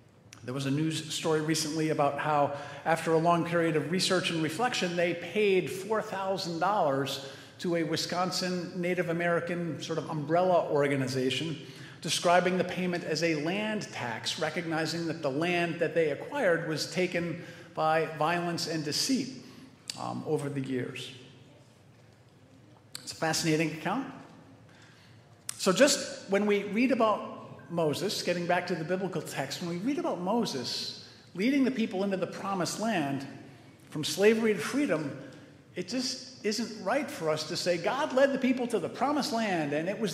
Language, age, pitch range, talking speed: English, 50-69, 145-190 Hz, 155 wpm